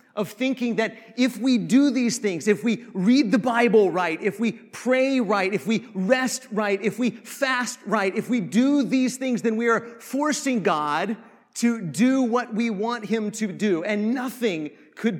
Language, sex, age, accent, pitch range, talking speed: English, male, 30-49, American, 210-255 Hz, 185 wpm